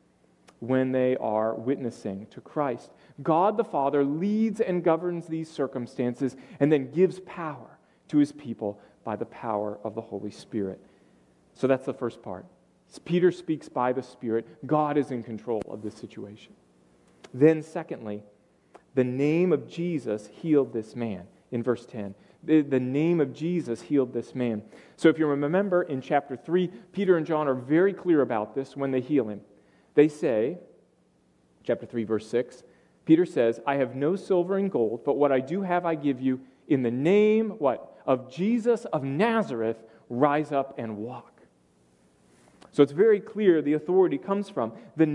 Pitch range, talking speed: 115-175 Hz, 165 wpm